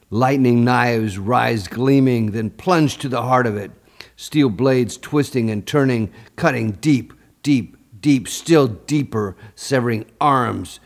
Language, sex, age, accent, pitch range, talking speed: English, male, 50-69, American, 105-135 Hz, 135 wpm